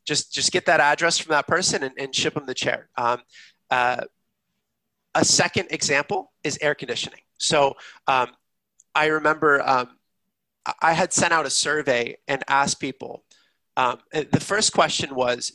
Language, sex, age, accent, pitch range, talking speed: English, male, 30-49, American, 130-160 Hz, 160 wpm